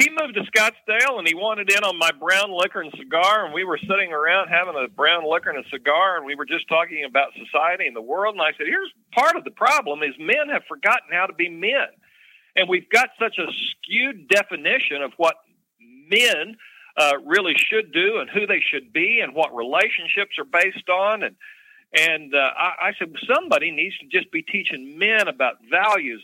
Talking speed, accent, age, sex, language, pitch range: 210 wpm, American, 50-69, male, English, 170-275 Hz